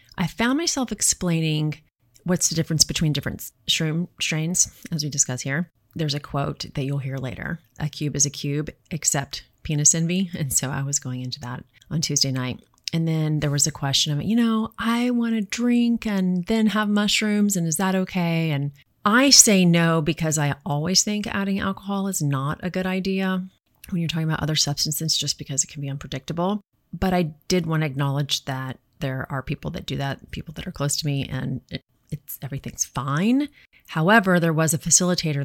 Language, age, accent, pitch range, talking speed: English, 30-49, American, 135-175 Hz, 200 wpm